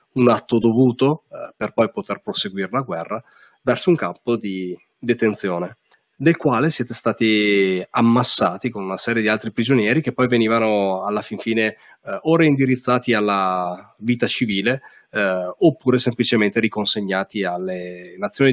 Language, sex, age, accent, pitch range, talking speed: Italian, male, 30-49, native, 105-125 Hz, 145 wpm